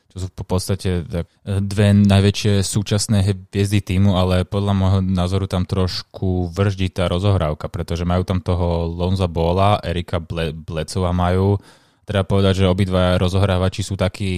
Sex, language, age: male, Slovak, 20-39